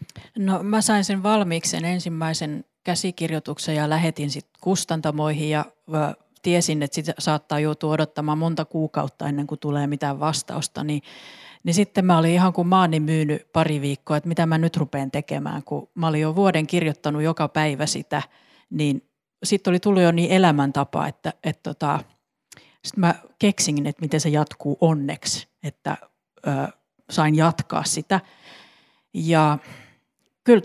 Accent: native